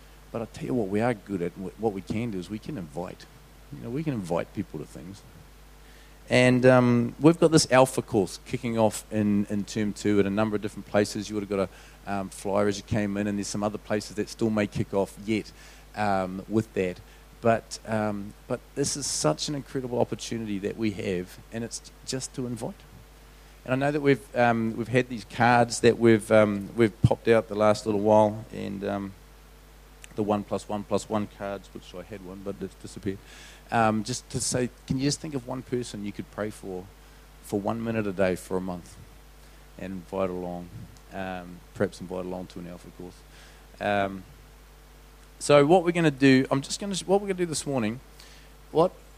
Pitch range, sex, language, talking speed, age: 100-130 Hz, male, English, 215 wpm, 40-59